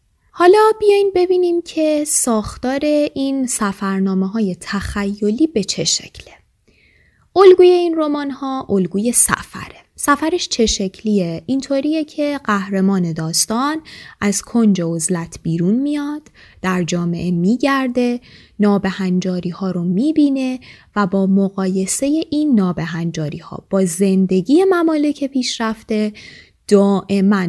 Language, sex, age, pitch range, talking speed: Persian, female, 20-39, 185-280 Hz, 110 wpm